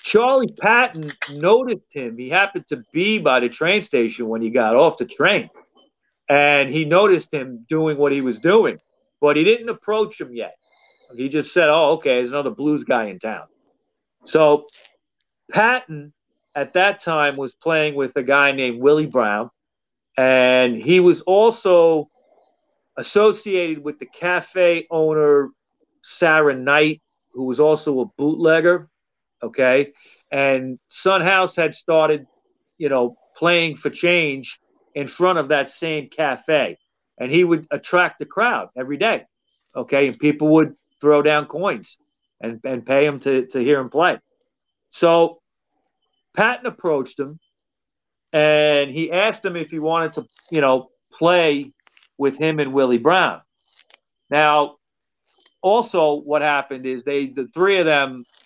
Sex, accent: male, American